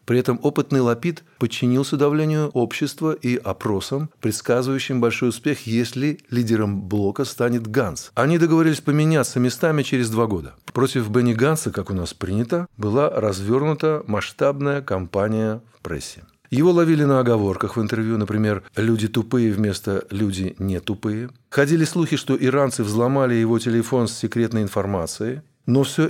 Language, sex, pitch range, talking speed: Russian, male, 110-140 Hz, 145 wpm